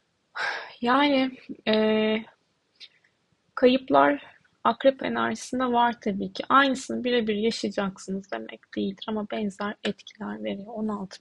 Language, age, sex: Turkish, 20-39, female